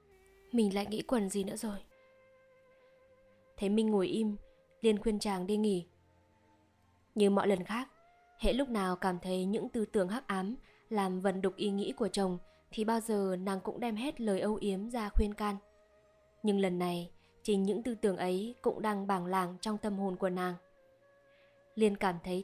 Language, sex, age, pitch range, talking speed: Vietnamese, female, 20-39, 190-225 Hz, 185 wpm